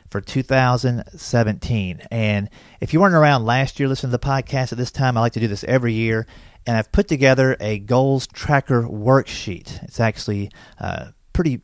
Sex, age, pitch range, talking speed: male, 40-59, 105-130 Hz, 180 wpm